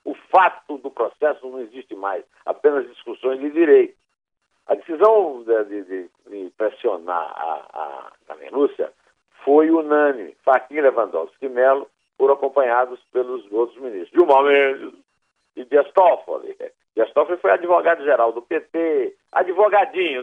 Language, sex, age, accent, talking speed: Portuguese, male, 60-79, Brazilian, 130 wpm